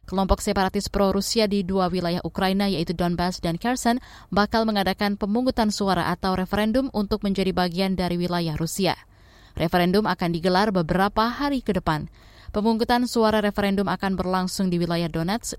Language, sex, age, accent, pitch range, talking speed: Indonesian, female, 20-39, native, 175-215 Hz, 145 wpm